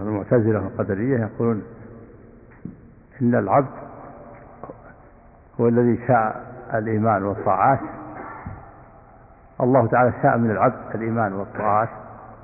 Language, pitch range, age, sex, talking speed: Arabic, 110-130 Hz, 50-69, male, 80 wpm